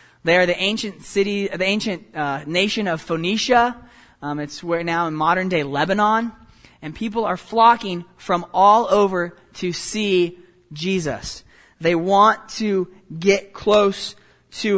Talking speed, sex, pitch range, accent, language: 140 wpm, male, 170-215 Hz, American, English